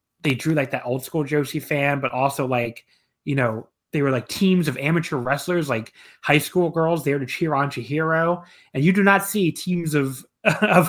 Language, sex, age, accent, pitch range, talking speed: English, male, 30-49, American, 130-170 Hz, 205 wpm